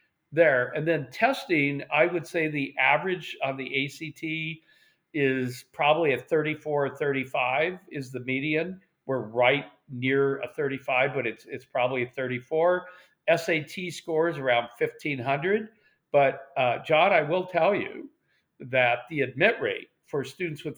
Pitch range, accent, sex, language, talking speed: 135-180 Hz, American, male, English, 145 wpm